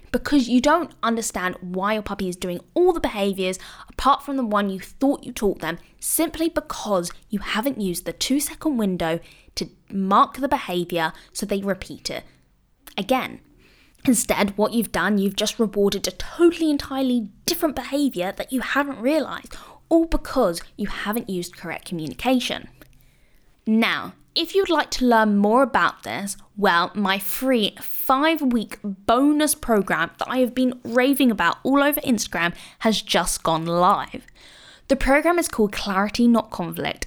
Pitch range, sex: 190-275 Hz, female